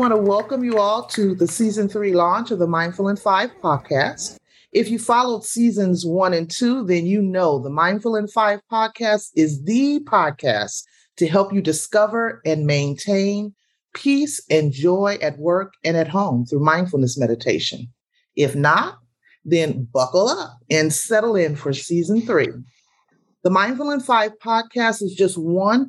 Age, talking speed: 40-59, 160 wpm